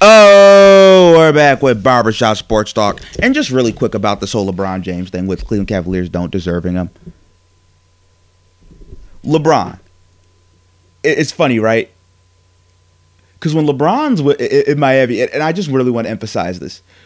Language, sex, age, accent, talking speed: English, male, 30-49, American, 140 wpm